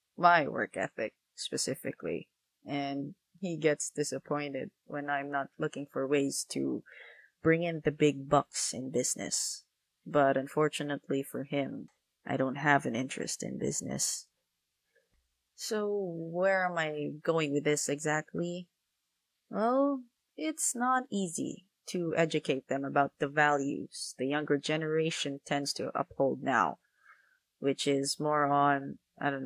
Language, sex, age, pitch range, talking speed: English, female, 20-39, 140-170 Hz, 130 wpm